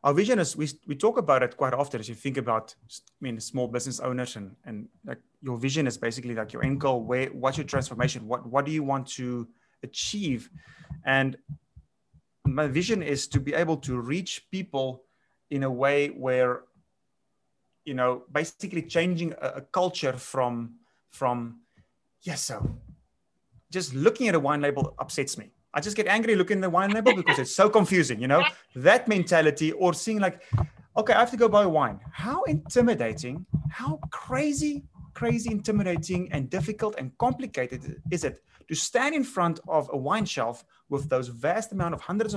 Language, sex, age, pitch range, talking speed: English, male, 30-49, 130-180 Hz, 180 wpm